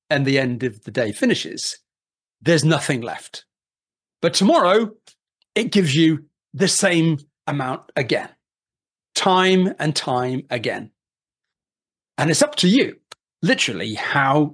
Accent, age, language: British, 40-59, English